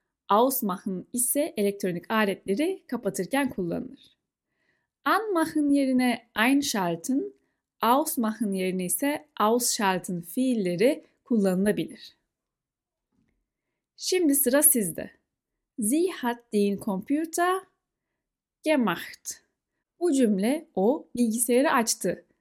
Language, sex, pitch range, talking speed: Turkish, female, 195-280 Hz, 85 wpm